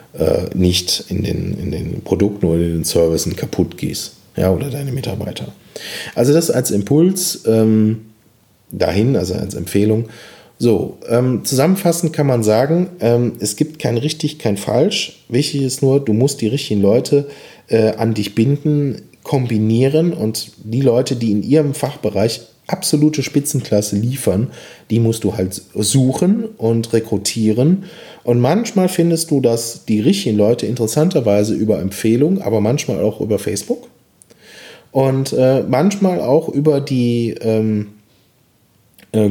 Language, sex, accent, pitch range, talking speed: German, male, German, 100-135 Hz, 140 wpm